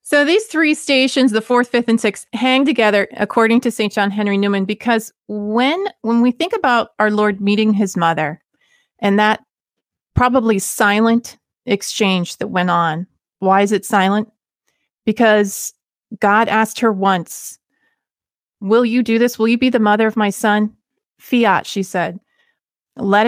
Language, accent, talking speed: English, American, 155 wpm